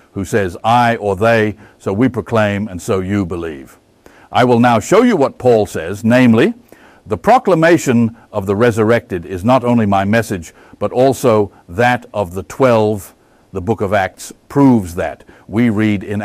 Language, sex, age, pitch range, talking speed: Dutch, male, 60-79, 100-130 Hz, 170 wpm